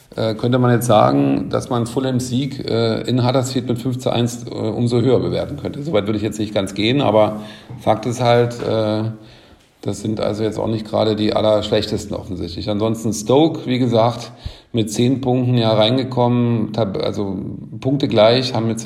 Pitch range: 105-120 Hz